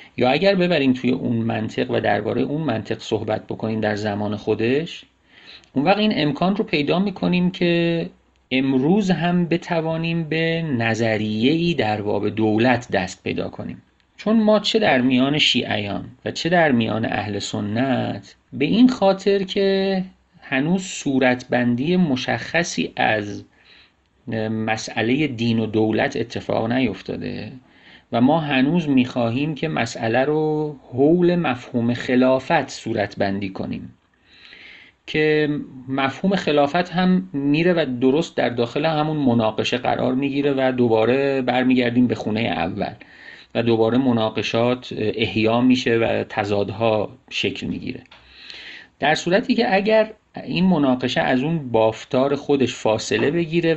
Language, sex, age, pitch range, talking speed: English, male, 40-59, 110-165 Hz, 125 wpm